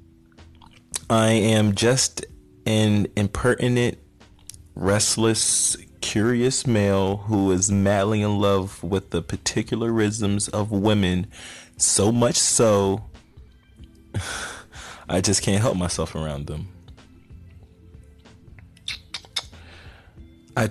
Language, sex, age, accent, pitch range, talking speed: English, male, 30-49, American, 90-105 Hz, 85 wpm